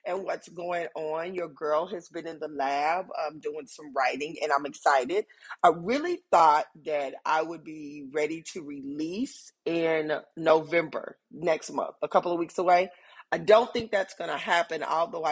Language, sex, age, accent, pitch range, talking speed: English, female, 30-49, American, 150-180 Hz, 175 wpm